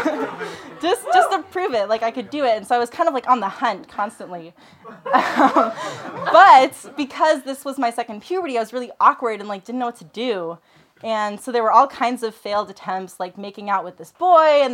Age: 20-39